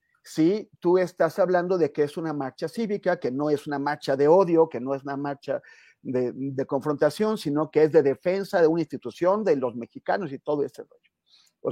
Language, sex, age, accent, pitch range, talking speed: Spanish, male, 40-59, Mexican, 140-180 Hz, 210 wpm